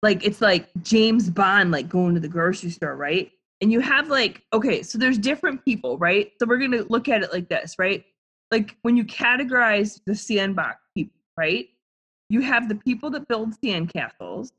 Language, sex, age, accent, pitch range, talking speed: English, female, 20-39, American, 190-270 Hz, 200 wpm